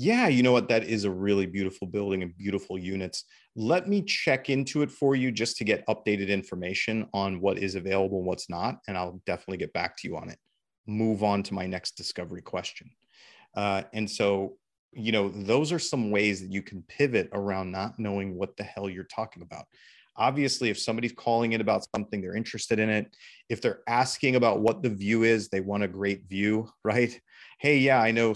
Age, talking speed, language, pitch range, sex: 30-49, 210 wpm, English, 100-120 Hz, male